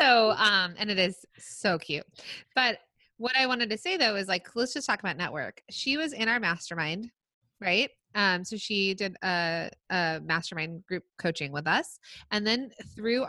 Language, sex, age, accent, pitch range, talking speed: English, female, 20-39, American, 165-210 Hz, 185 wpm